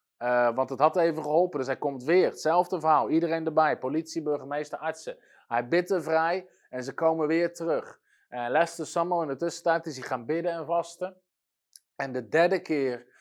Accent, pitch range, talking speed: Dutch, 130-170 Hz, 190 wpm